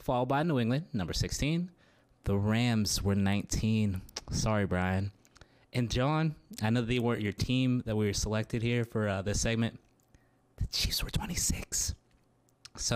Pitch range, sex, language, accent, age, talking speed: 110-135 Hz, male, English, American, 20-39, 155 wpm